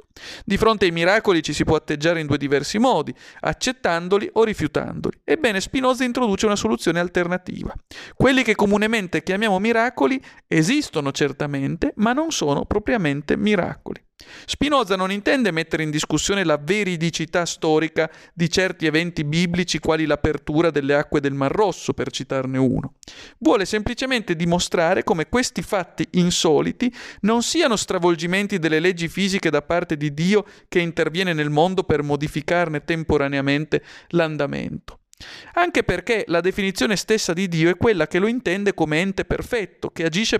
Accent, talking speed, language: native, 145 wpm, Italian